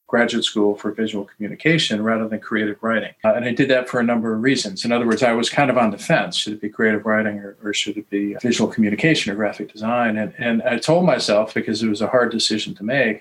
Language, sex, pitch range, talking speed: Spanish, male, 110-130 Hz, 260 wpm